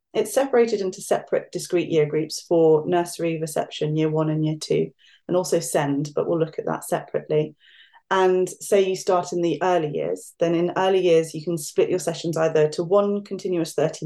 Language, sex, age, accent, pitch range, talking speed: English, female, 30-49, British, 160-190 Hz, 195 wpm